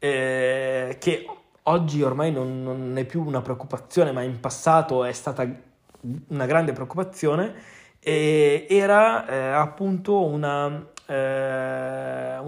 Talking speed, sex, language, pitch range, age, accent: 115 wpm, male, Italian, 130-165 Hz, 20-39, native